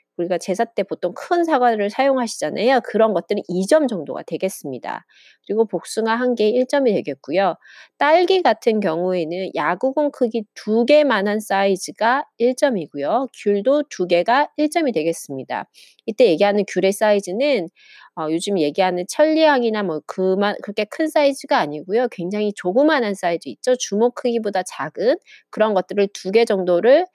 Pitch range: 185-270 Hz